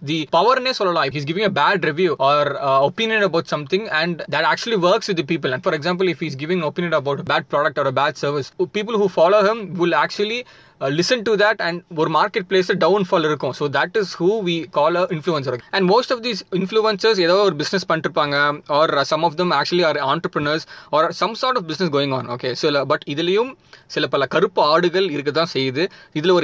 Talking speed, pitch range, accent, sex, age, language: 230 wpm, 150-195 Hz, native, male, 20-39, Tamil